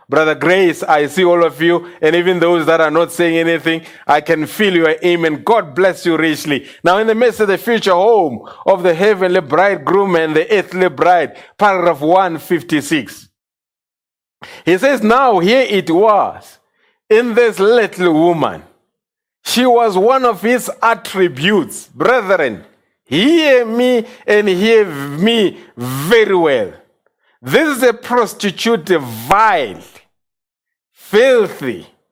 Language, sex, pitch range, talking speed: English, male, 180-250 Hz, 135 wpm